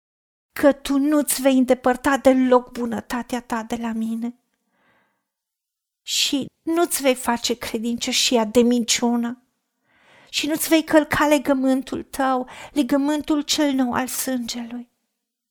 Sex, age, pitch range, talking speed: female, 40-59, 235-280 Hz, 110 wpm